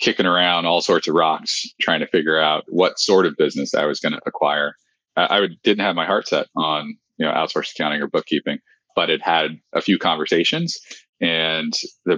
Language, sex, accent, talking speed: English, male, American, 200 wpm